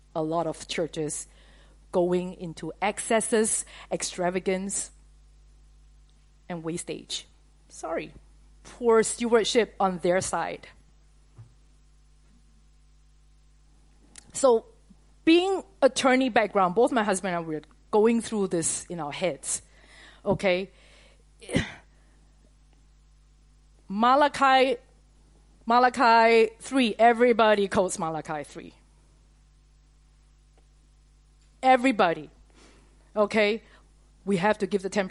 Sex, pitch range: female, 180-245 Hz